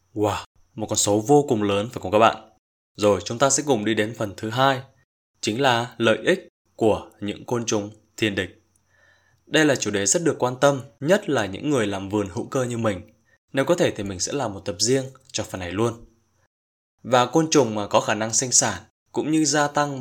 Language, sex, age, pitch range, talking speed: Vietnamese, male, 20-39, 110-140 Hz, 230 wpm